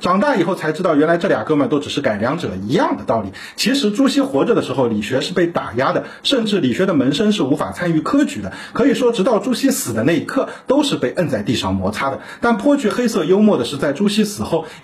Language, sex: Chinese, male